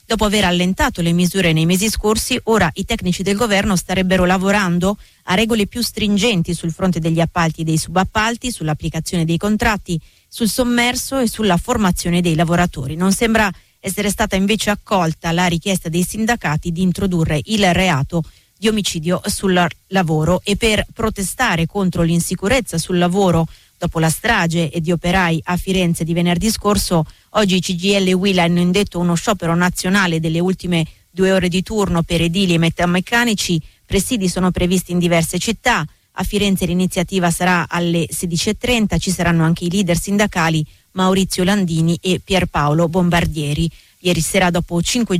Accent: native